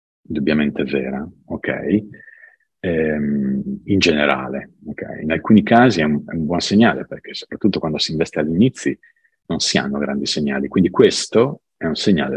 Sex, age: male, 50-69